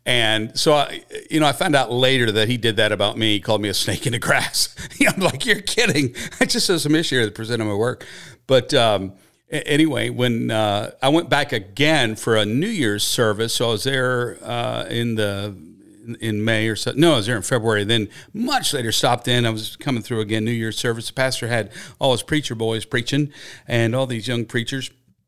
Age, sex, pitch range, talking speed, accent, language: 50-69, male, 115-150 Hz, 220 wpm, American, English